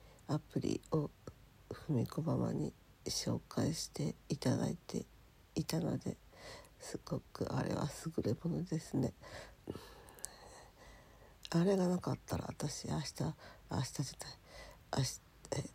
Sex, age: female, 50-69